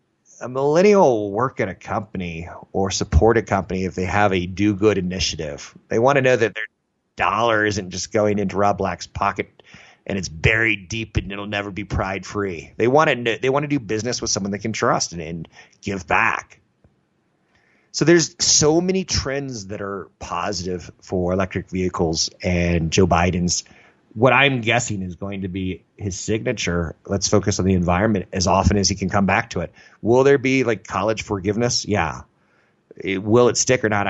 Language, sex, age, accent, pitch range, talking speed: English, male, 30-49, American, 90-115 Hz, 180 wpm